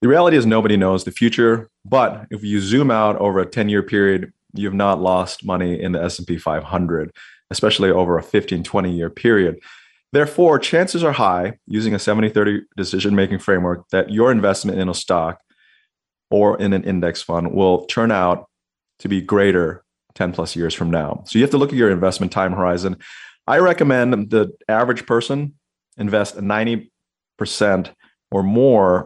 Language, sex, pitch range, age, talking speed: English, male, 90-110 Hz, 30-49, 180 wpm